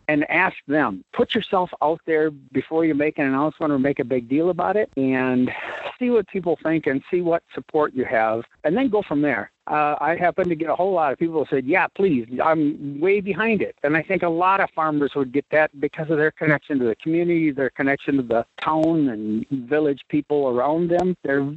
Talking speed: 225 wpm